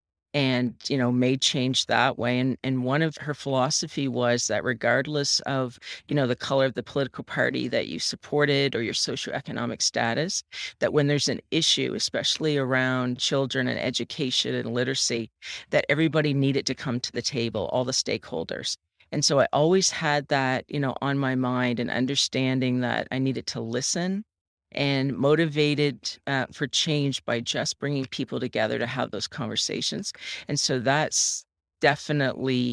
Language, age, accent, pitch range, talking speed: English, 40-59, American, 125-140 Hz, 165 wpm